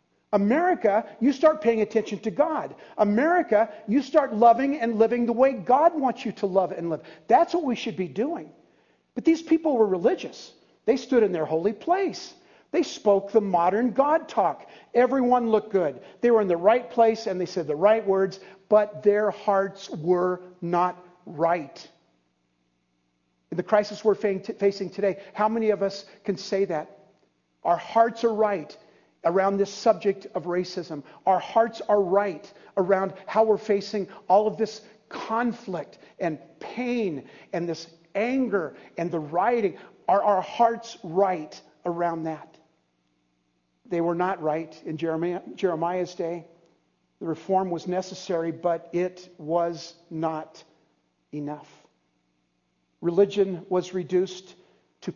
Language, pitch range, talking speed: English, 170-225 Hz, 145 wpm